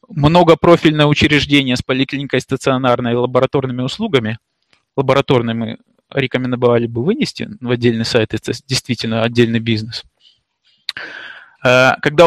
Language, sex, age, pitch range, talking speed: Russian, male, 20-39, 120-155 Hz, 105 wpm